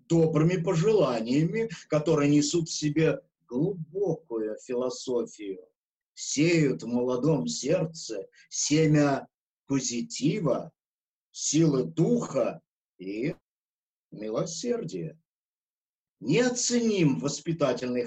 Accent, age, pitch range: native, 50-69, 145-220 Hz